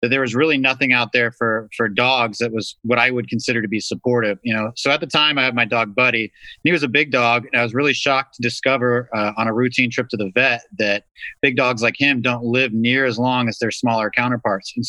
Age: 30-49